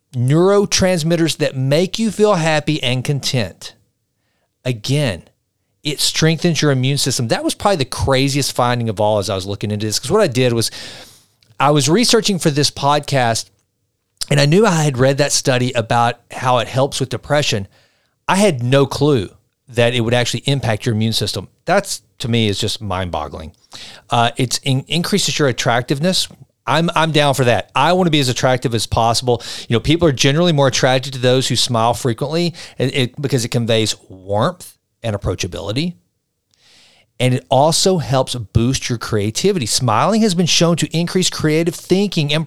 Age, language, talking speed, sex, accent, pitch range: 40-59, English, 175 wpm, male, American, 115-155 Hz